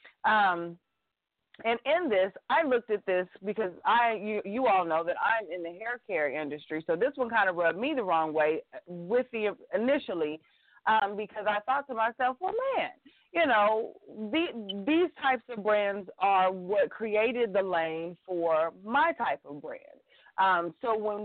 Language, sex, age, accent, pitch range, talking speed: English, female, 30-49, American, 180-240 Hz, 175 wpm